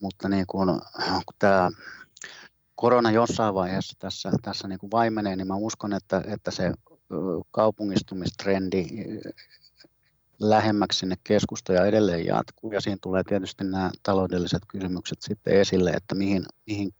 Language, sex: Finnish, male